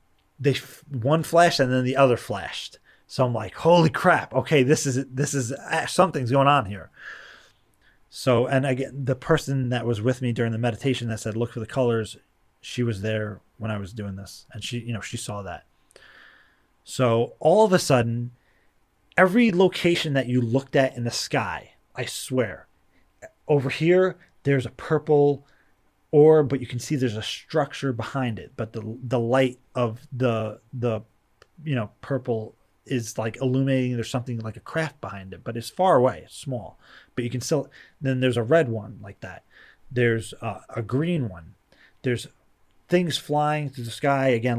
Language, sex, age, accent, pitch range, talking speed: English, male, 30-49, American, 110-140 Hz, 185 wpm